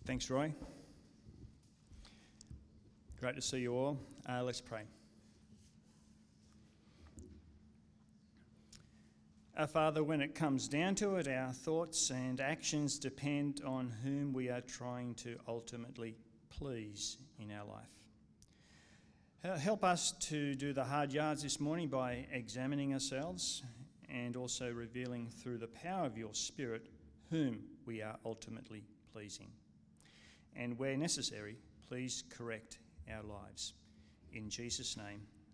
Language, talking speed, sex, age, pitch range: English, 120 wpm, male, 40-59, 110-145 Hz